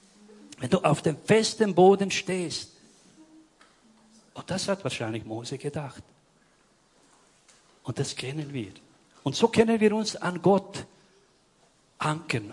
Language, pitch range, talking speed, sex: German, 115-165 Hz, 120 wpm, male